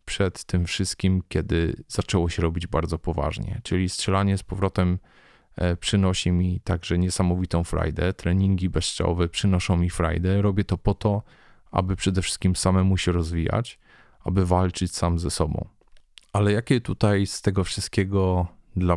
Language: Polish